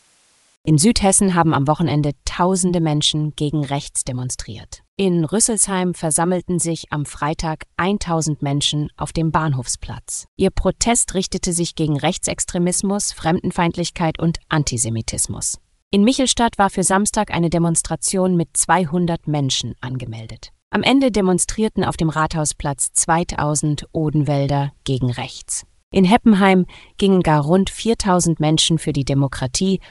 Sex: female